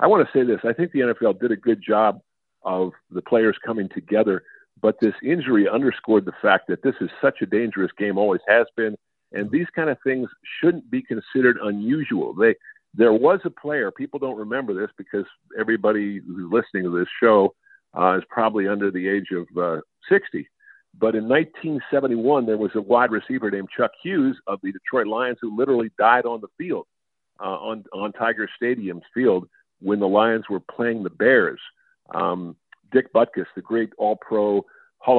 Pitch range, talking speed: 100-135 Hz, 185 wpm